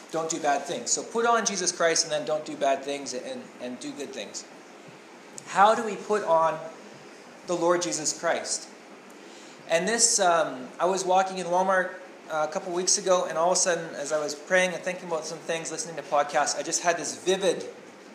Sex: male